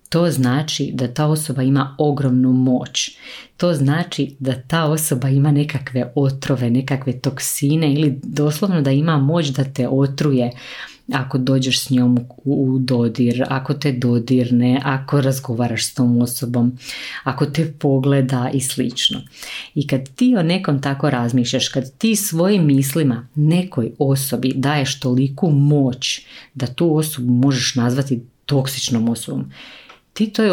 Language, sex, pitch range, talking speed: Croatian, female, 125-145 Hz, 140 wpm